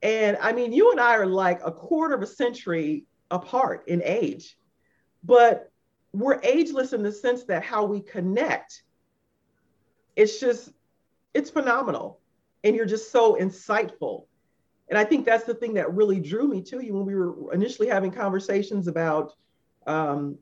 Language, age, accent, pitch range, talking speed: English, 40-59, American, 190-255 Hz, 160 wpm